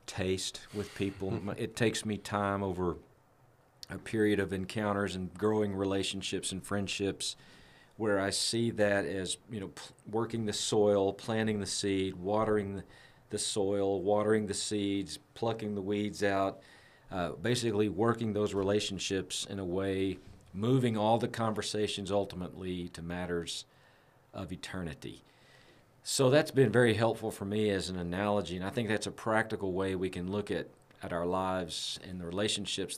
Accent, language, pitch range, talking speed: American, English, 95-110 Hz, 155 wpm